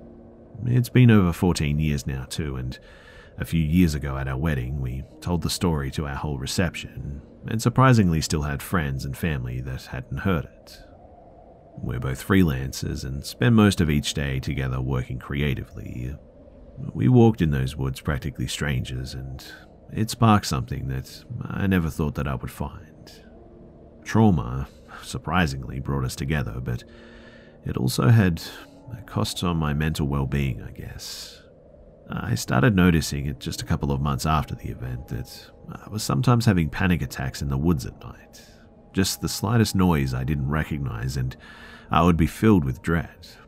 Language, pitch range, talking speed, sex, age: English, 65-90 Hz, 165 wpm, male, 40-59